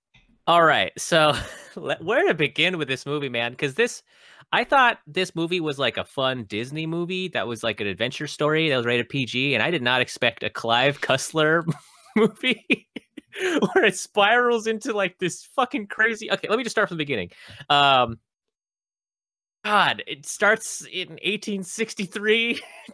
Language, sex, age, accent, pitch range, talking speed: English, male, 30-49, American, 120-190 Hz, 165 wpm